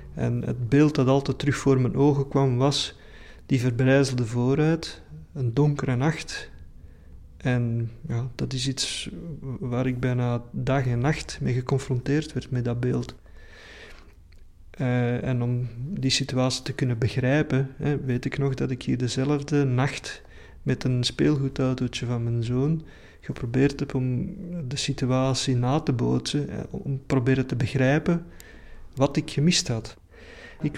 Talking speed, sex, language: 145 wpm, male, Dutch